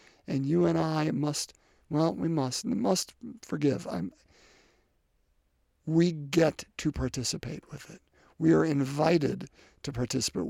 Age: 50-69